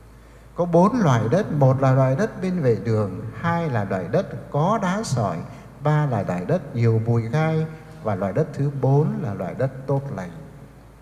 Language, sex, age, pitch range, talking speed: English, male, 60-79, 120-160 Hz, 190 wpm